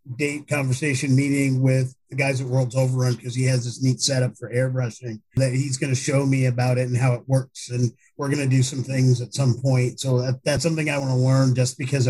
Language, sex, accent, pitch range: English, male, American, 125-150 Hz